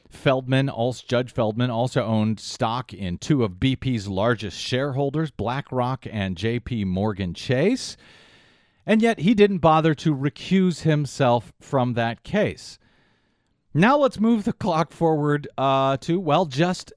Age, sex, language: 40-59, male, English